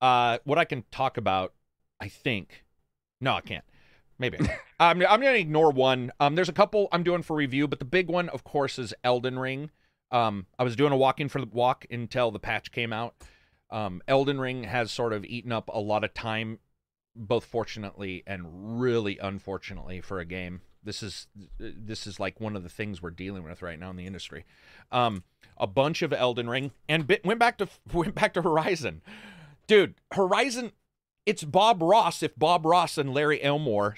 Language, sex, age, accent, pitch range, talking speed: English, male, 30-49, American, 100-145 Hz, 200 wpm